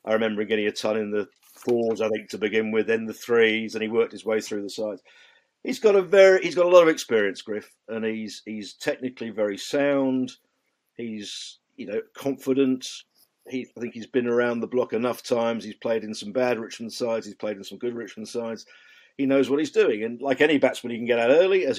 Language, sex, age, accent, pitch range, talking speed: English, male, 50-69, British, 115-145 Hz, 230 wpm